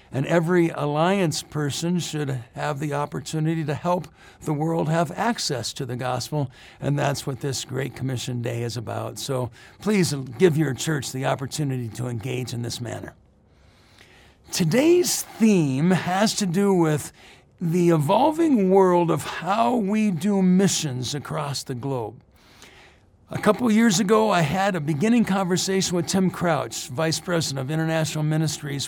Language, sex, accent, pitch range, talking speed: English, male, American, 150-195 Hz, 150 wpm